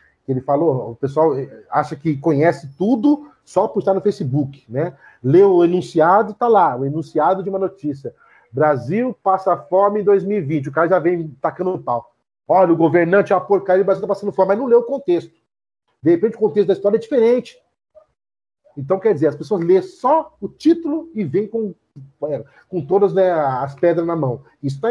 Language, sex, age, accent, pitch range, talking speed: Portuguese, male, 40-59, Brazilian, 155-210 Hz, 195 wpm